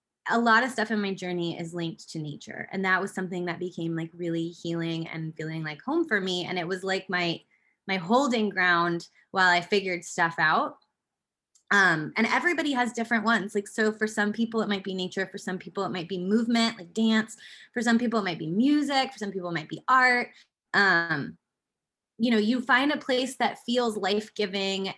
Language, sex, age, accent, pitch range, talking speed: English, female, 20-39, American, 180-230 Hz, 210 wpm